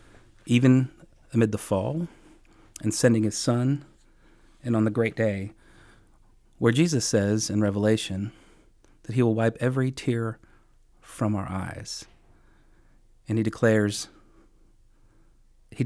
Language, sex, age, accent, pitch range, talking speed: English, male, 40-59, American, 105-125 Hz, 115 wpm